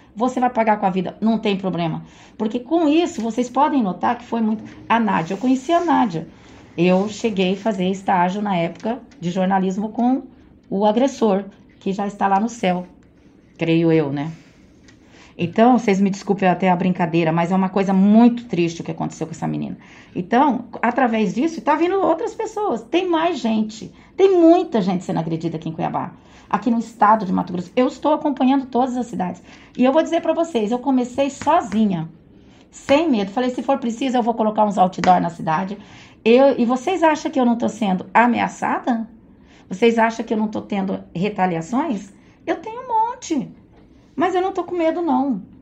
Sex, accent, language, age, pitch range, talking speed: female, Brazilian, Portuguese, 20-39, 195-255 Hz, 190 wpm